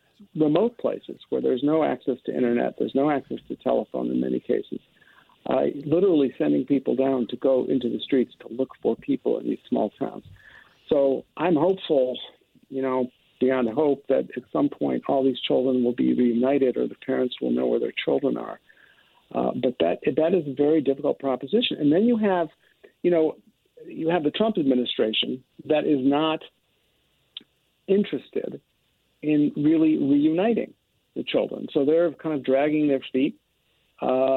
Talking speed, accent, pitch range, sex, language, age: 170 wpm, American, 130-155 Hz, male, English, 50-69